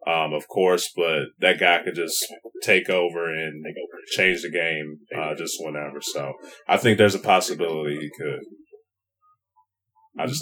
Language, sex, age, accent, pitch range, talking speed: English, male, 30-49, American, 80-110 Hz, 155 wpm